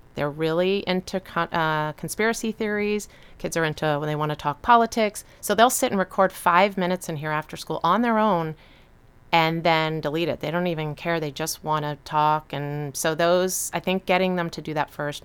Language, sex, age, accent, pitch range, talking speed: English, female, 30-49, American, 150-180 Hz, 210 wpm